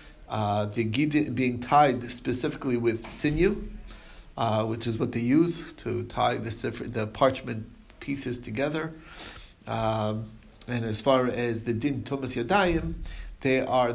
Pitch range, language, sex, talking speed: 120-150 Hz, English, male, 140 wpm